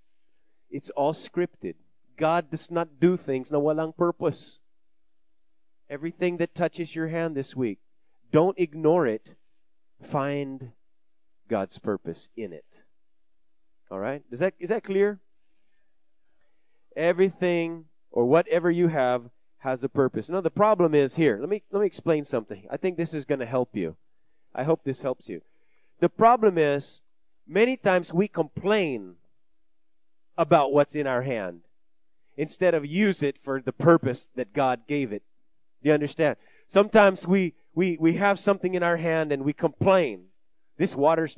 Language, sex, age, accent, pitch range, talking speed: English, male, 30-49, American, 145-200 Hz, 150 wpm